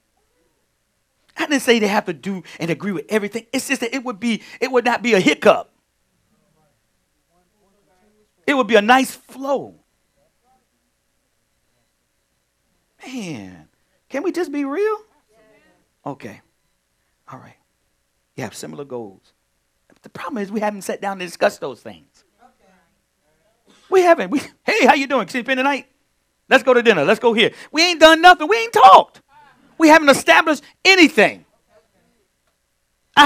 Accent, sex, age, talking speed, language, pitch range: American, male, 40-59, 145 wpm, English, 190-285 Hz